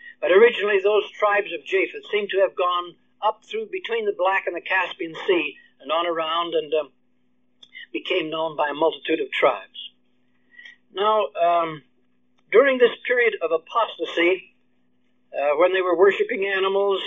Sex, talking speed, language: male, 155 wpm, English